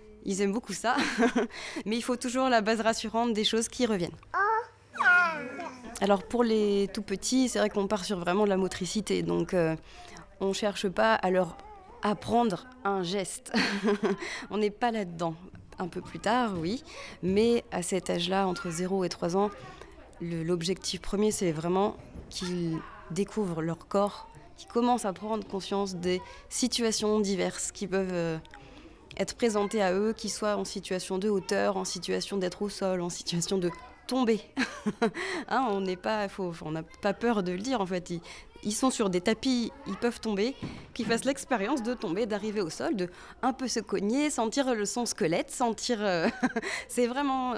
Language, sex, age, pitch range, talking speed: French, female, 20-39, 185-235 Hz, 165 wpm